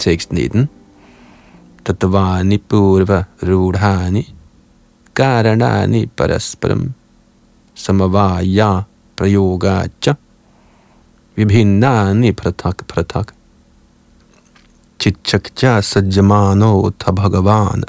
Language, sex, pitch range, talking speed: Danish, male, 95-115 Hz, 75 wpm